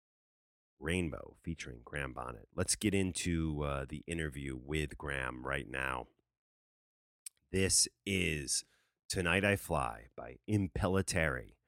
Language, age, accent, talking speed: English, 30-49, American, 110 wpm